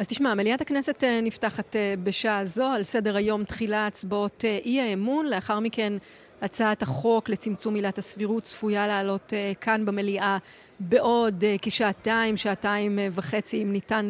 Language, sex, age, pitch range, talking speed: Hebrew, female, 30-49, 200-230 Hz, 130 wpm